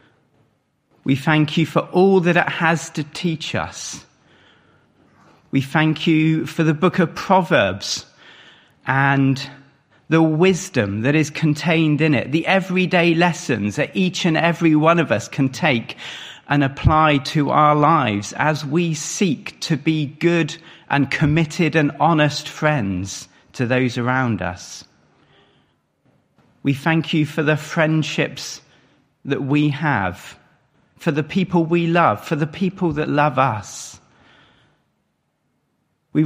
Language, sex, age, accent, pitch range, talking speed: English, male, 40-59, British, 130-165 Hz, 130 wpm